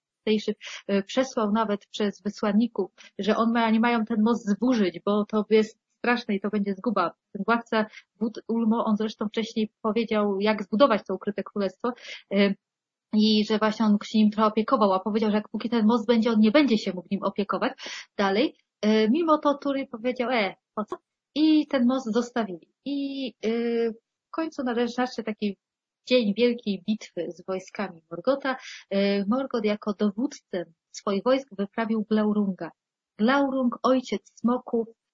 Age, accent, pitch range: 30-49, native, 205-245 Hz